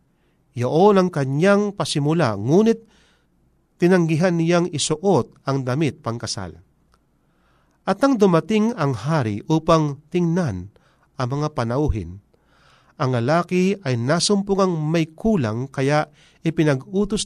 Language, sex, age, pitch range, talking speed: Filipino, male, 40-59, 125-180 Hz, 105 wpm